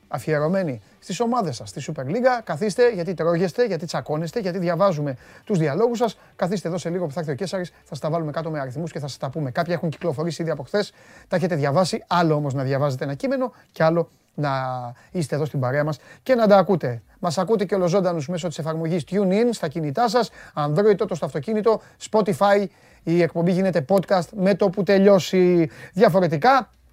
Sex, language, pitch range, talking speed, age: male, Greek, 150-195 Hz, 200 wpm, 30-49